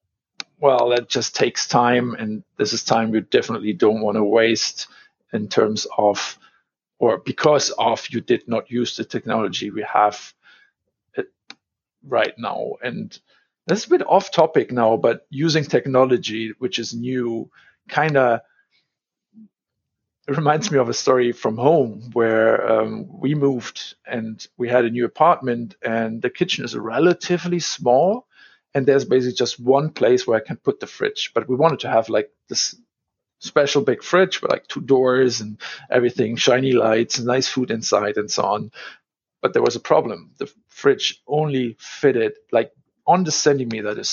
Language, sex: English, male